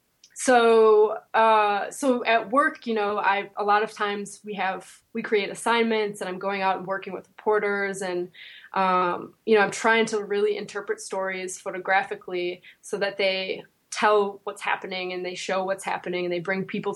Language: English